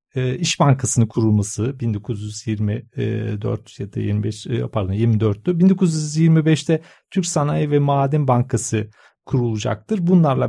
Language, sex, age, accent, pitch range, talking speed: Turkish, male, 40-59, native, 115-165 Hz, 95 wpm